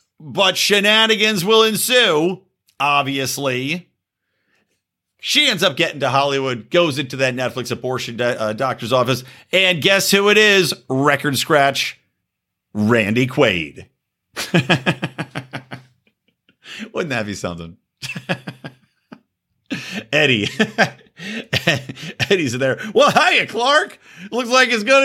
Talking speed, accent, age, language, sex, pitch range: 105 wpm, American, 50-69, English, male, 120-185 Hz